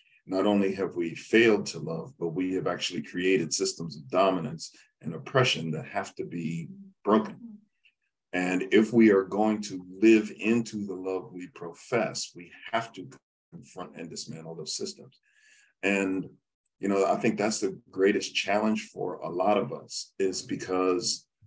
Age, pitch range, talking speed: 50-69, 90-105 Hz, 160 wpm